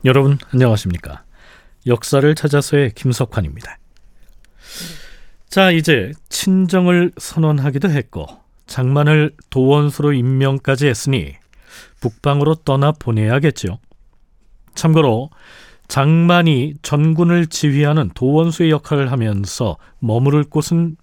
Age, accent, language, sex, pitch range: 40-59, native, Korean, male, 120-160 Hz